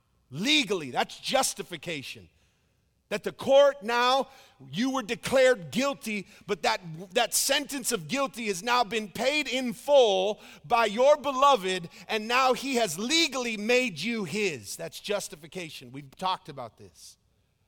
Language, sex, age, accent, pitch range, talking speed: English, male, 40-59, American, 190-260 Hz, 135 wpm